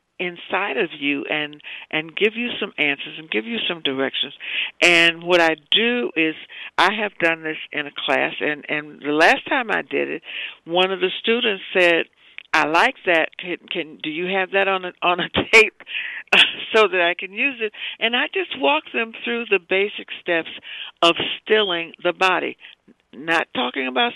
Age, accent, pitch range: 60-79, American, 165-215 Hz